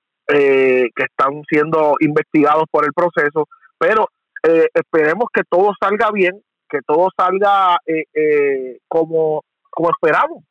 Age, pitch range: 40-59, 165-235 Hz